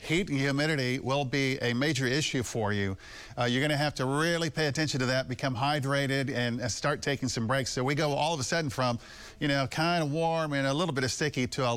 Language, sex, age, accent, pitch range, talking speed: English, male, 50-69, American, 125-165 Hz, 255 wpm